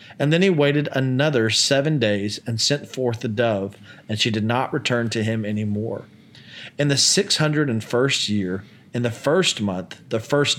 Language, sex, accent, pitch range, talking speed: English, male, American, 110-140 Hz, 195 wpm